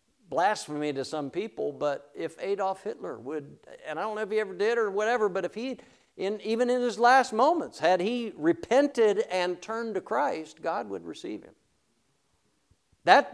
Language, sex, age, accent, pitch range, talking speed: English, male, 50-69, American, 140-230 Hz, 180 wpm